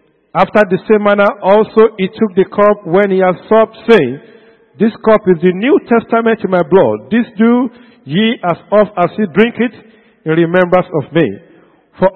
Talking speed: 185 wpm